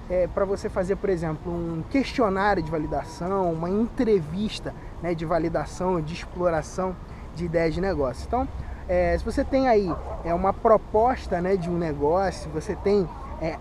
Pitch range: 170-235 Hz